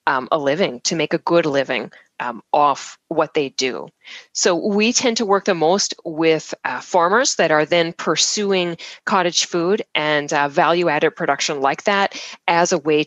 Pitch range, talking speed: 155-205 Hz, 175 wpm